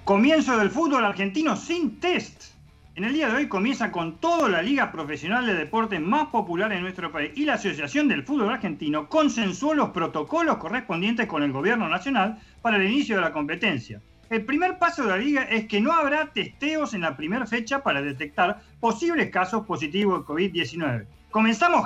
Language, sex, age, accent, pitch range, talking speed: Spanish, male, 40-59, Argentinian, 170-275 Hz, 185 wpm